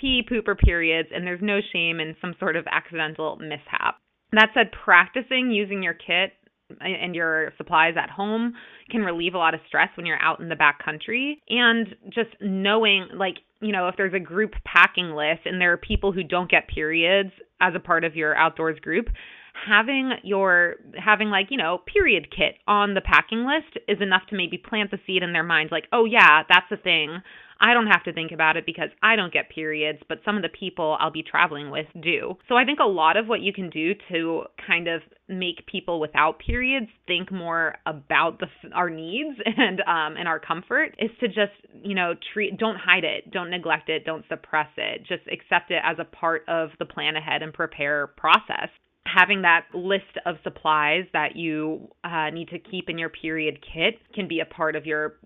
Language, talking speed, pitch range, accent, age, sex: English, 205 wpm, 160-210 Hz, American, 20-39, female